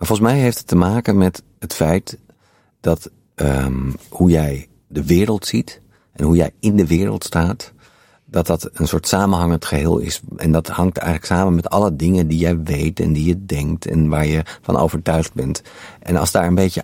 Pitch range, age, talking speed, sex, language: 85-100 Hz, 50-69, 195 wpm, male, Dutch